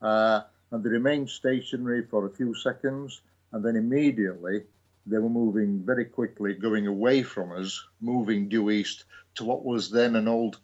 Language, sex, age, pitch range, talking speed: English, male, 50-69, 105-125 Hz, 170 wpm